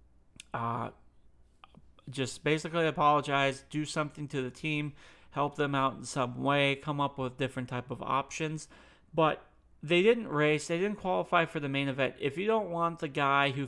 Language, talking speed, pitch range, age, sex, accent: English, 175 wpm, 130-155 Hz, 40-59, male, American